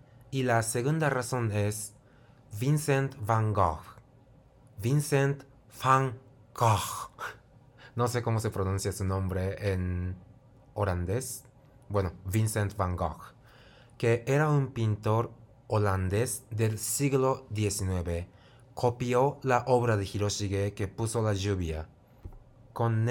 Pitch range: 100-125 Hz